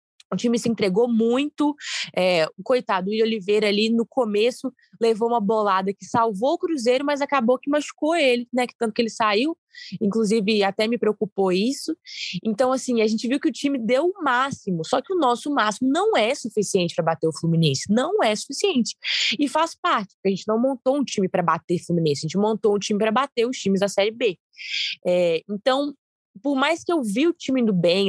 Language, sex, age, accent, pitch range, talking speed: Portuguese, female, 20-39, Brazilian, 200-260 Hz, 215 wpm